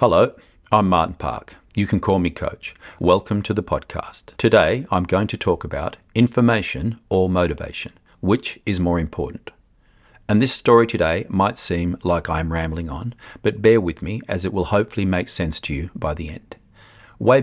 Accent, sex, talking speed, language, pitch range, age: Australian, male, 180 wpm, English, 85-105 Hz, 40-59